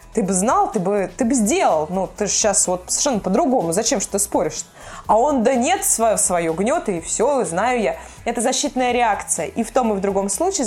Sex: female